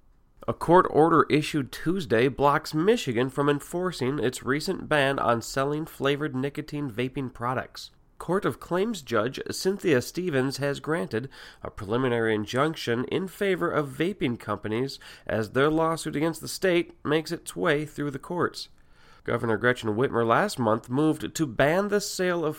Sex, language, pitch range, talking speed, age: male, English, 115-155 Hz, 150 wpm, 30-49